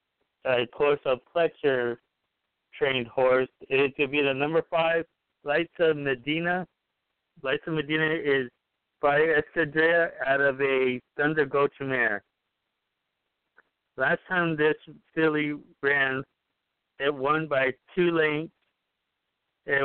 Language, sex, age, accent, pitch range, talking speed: English, male, 60-79, American, 130-155 Hz, 120 wpm